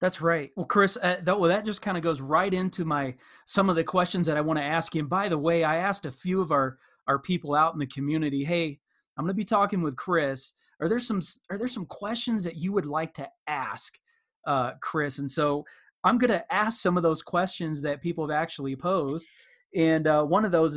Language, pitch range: English, 145-185 Hz